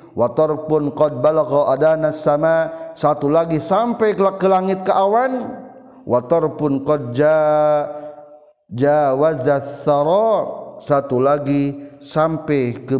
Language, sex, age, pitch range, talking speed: Indonesian, male, 40-59, 140-190 Hz, 95 wpm